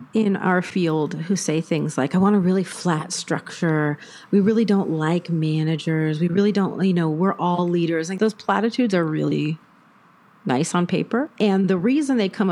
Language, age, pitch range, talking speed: English, 40-59, 165-215 Hz, 185 wpm